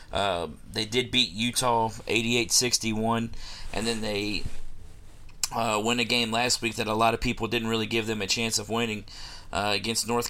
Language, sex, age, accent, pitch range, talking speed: English, male, 40-59, American, 105-120 Hz, 180 wpm